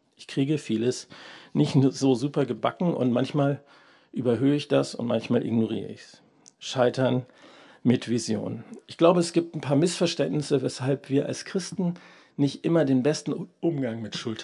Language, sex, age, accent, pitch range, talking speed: German, male, 50-69, German, 125-145 Hz, 160 wpm